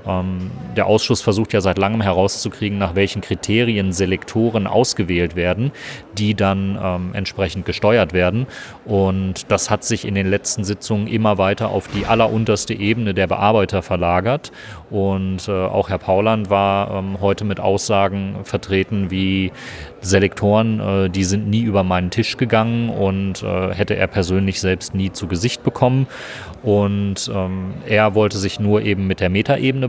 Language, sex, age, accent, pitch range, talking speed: German, male, 30-49, German, 95-115 Hz, 155 wpm